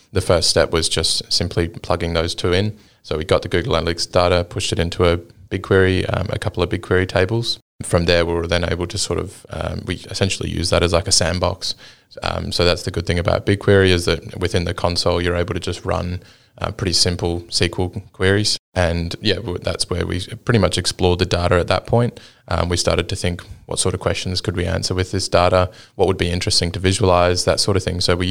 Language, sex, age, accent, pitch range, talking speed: English, male, 20-39, Australian, 90-100 Hz, 230 wpm